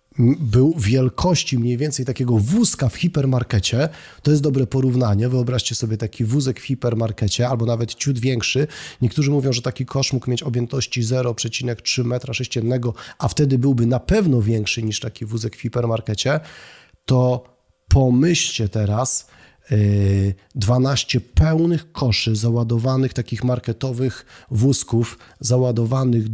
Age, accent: 30-49, native